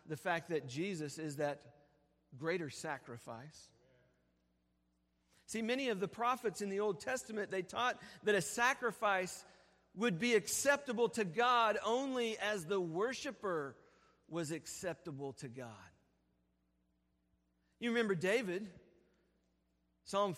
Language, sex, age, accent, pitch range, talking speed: English, male, 50-69, American, 150-220 Hz, 115 wpm